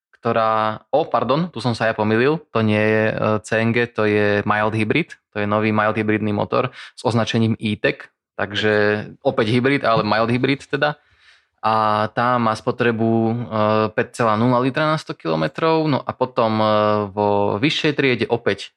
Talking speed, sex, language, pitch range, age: 155 wpm, male, Slovak, 105-125 Hz, 20-39